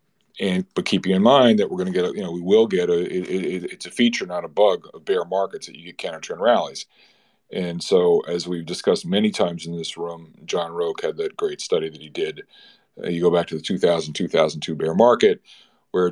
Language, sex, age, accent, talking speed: English, male, 40-59, American, 240 wpm